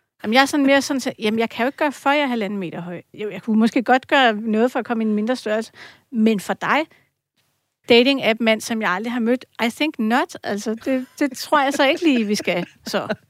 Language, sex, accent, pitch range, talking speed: Danish, female, native, 205-250 Hz, 230 wpm